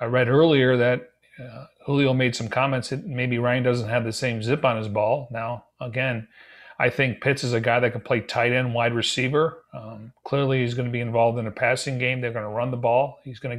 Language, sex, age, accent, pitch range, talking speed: English, male, 40-59, American, 120-140 Hz, 245 wpm